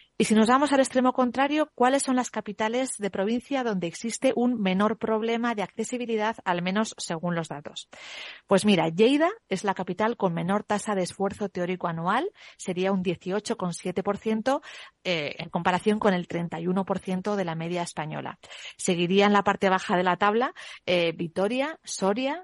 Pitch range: 175-225 Hz